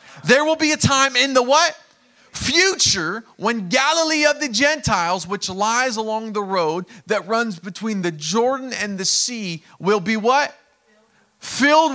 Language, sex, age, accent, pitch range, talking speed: English, male, 30-49, American, 170-235 Hz, 155 wpm